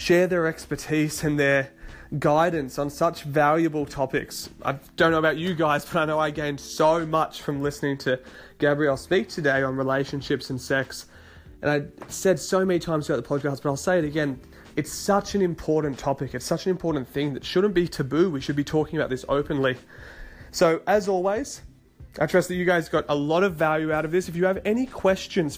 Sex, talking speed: male, 210 wpm